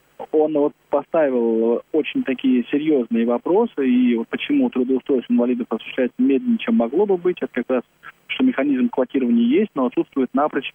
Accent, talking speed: native, 155 wpm